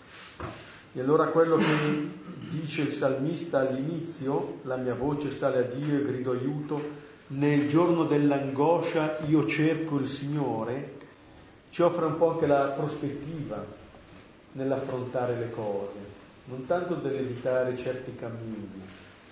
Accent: native